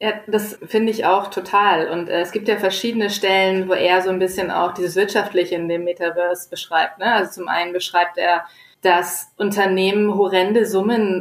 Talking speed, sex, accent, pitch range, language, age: 180 wpm, female, German, 185-210 Hz, German, 20-39